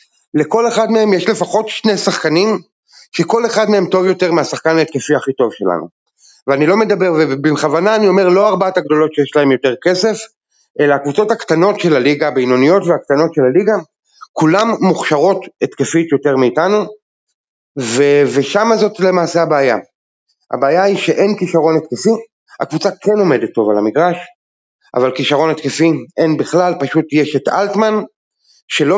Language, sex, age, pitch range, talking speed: Hebrew, male, 30-49, 140-190 Hz, 145 wpm